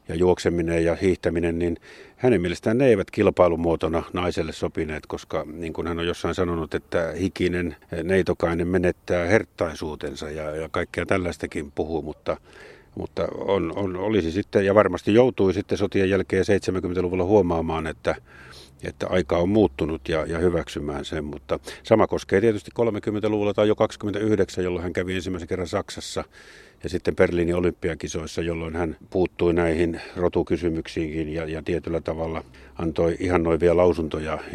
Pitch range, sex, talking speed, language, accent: 80-90 Hz, male, 135 wpm, Finnish, native